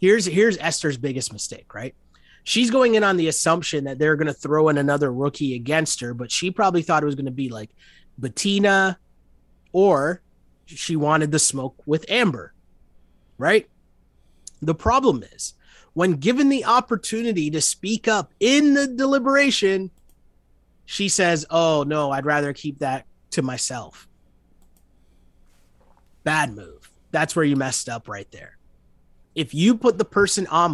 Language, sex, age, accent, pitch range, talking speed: English, male, 30-49, American, 140-190 Hz, 155 wpm